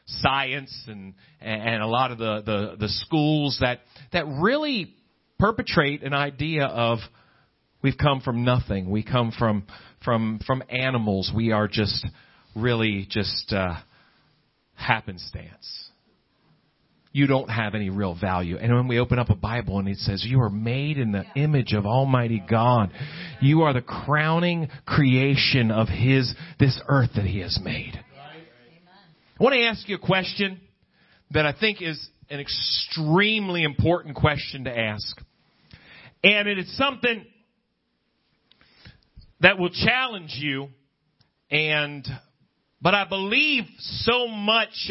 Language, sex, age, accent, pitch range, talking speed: English, male, 40-59, American, 115-175 Hz, 140 wpm